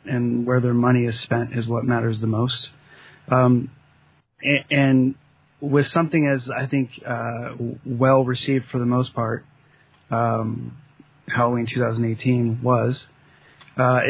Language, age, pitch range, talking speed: English, 30-49, 120-135 Hz, 130 wpm